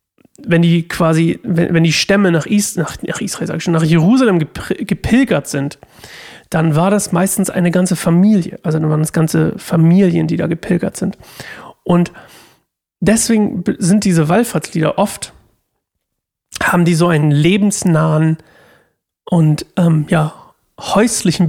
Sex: male